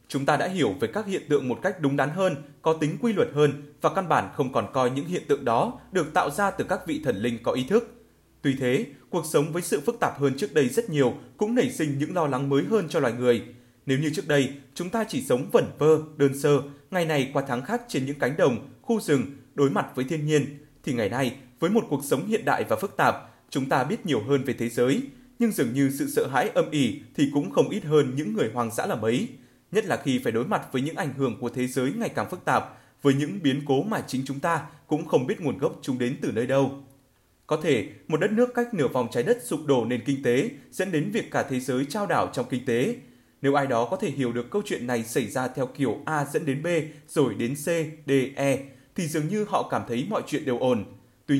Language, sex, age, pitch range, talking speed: Vietnamese, male, 20-39, 130-170 Hz, 265 wpm